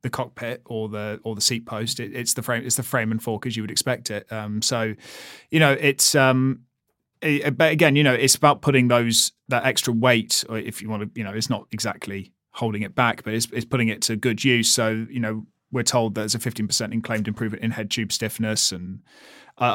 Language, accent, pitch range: English, British, 110-130 Hz